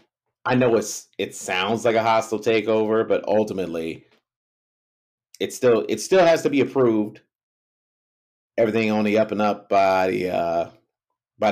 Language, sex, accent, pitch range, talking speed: English, male, American, 90-115 Hz, 150 wpm